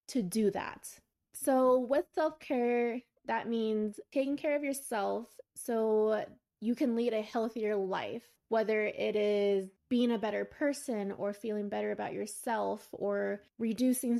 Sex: female